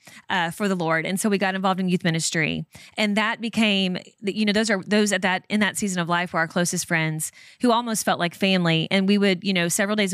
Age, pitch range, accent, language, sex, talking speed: 20-39, 180-225 Hz, American, English, female, 255 wpm